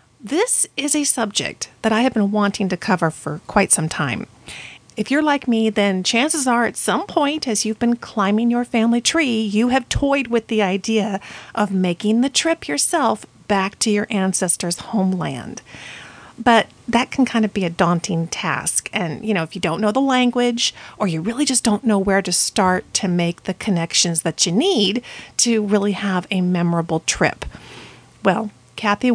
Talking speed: 185 wpm